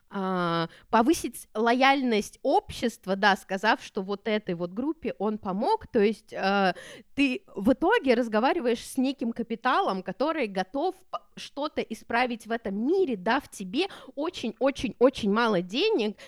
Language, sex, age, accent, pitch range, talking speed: Russian, female, 20-39, native, 190-245 Hz, 135 wpm